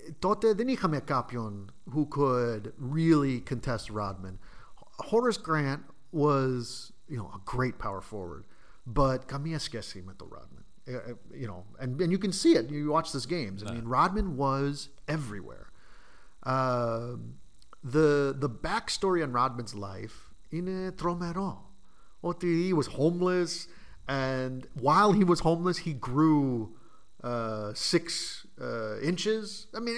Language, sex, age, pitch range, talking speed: Greek, male, 40-59, 130-185 Hz, 115 wpm